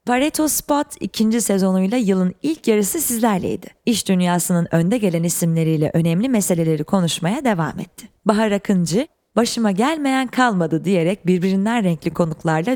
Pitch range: 165-225 Hz